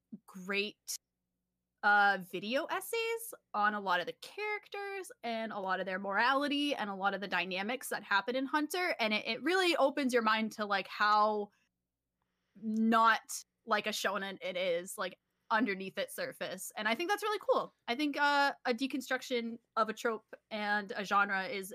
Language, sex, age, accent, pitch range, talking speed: English, female, 20-39, American, 195-235 Hz, 175 wpm